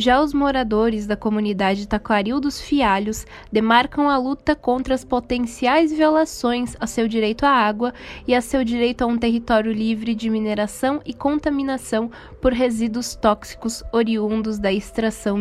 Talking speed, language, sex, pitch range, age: 150 wpm, Portuguese, female, 210-245 Hz, 10-29